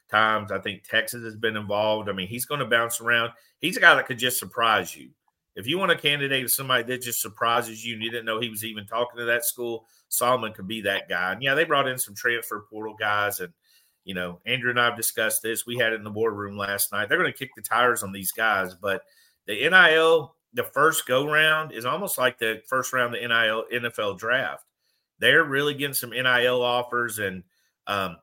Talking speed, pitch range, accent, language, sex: 230 wpm, 110-130 Hz, American, English, male